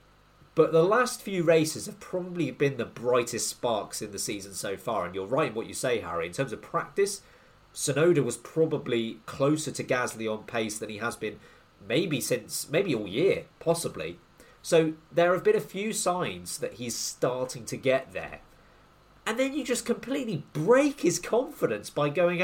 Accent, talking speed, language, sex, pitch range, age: British, 185 wpm, English, male, 145-190 Hz, 30-49